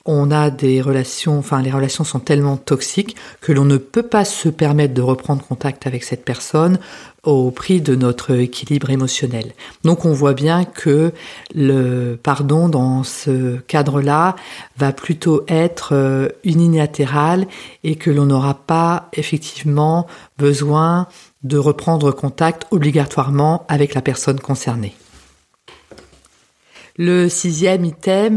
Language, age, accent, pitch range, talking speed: French, 50-69, French, 135-175 Hz, 130 wpm